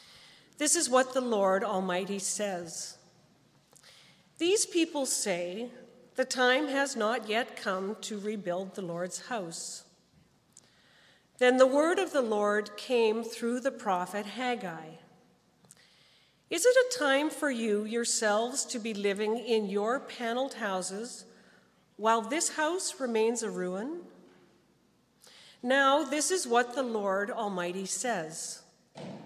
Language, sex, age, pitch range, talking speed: English, female, 50-69, 200-260 Hz, 125 wpm